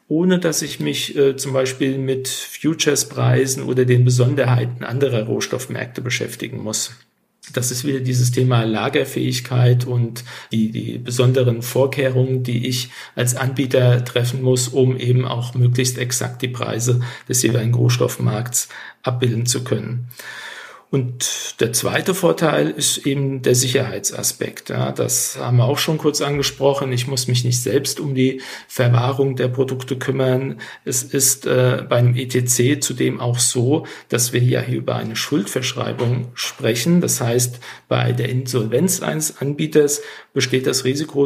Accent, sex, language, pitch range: German, male, German, 125-135 Hz